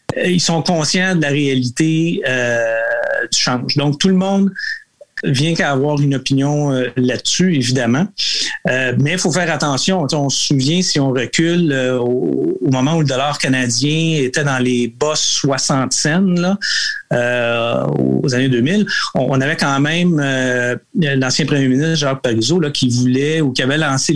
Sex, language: male, French